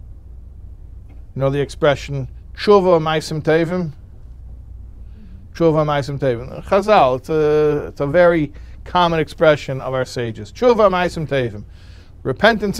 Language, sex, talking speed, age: English, male, 115 wpm, 50-69